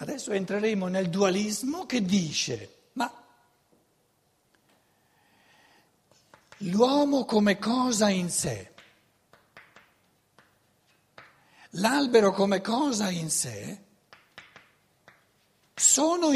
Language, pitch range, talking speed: Italian, 160-255 Hz, 65 wpm